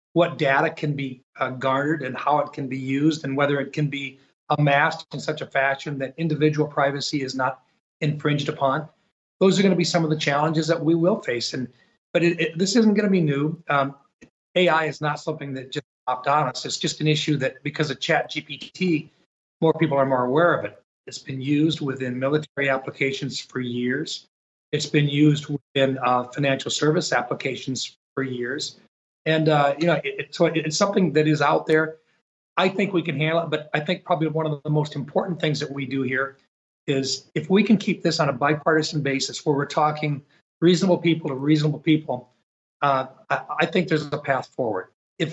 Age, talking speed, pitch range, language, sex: 40-59, 205 wpm, 140-160 Hz, English, male